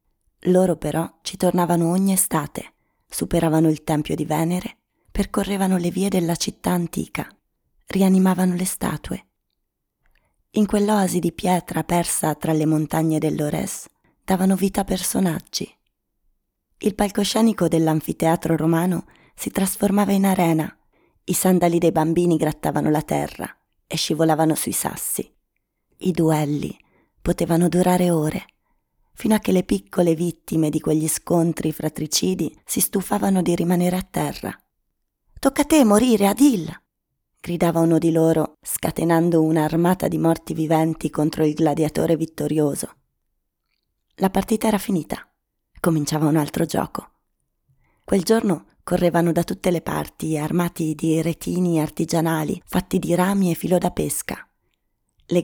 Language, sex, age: Italian, female, 20-39